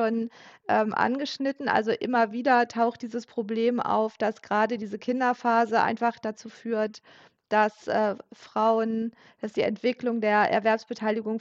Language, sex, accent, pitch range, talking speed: German, female, German, 215-245 Hz, 120 wpm